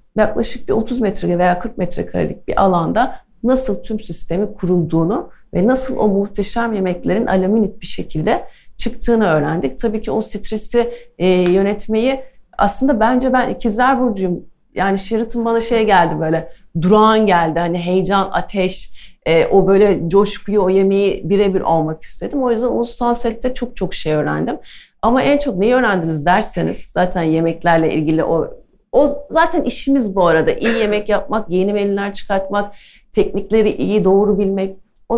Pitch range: 180-235 Hz